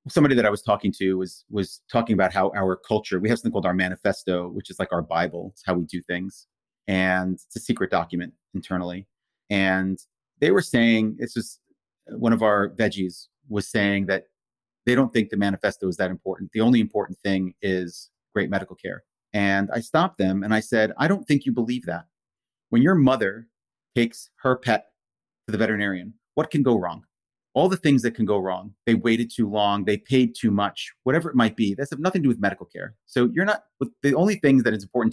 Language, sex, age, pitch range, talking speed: English, male, 30-49, 95-115 Hz, 215 wpm